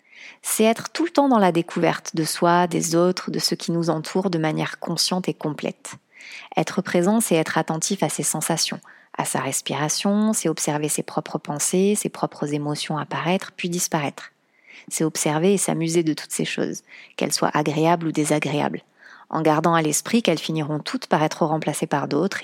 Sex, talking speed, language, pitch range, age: female, 185 wpm, French, 155-185 Hz, 30-49